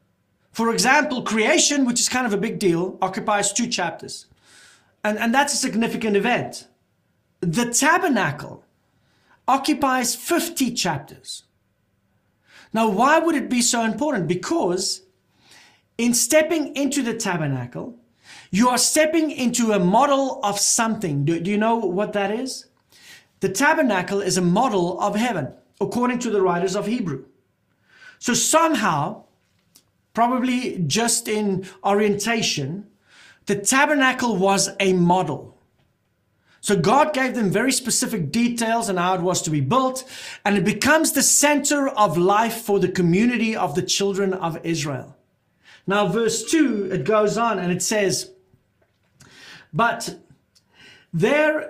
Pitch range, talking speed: 180-250 Hz, 135 wpm